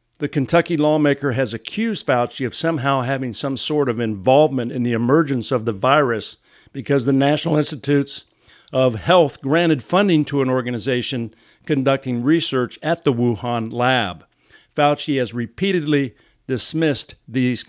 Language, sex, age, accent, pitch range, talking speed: English, male, 50-69, American, 115-140 Hz, 140 wpm